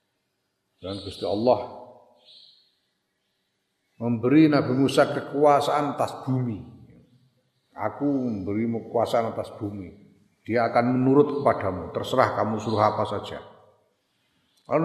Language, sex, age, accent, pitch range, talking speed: Indonesian, male, 50-69, native, 105-130 Hz, 95 wpm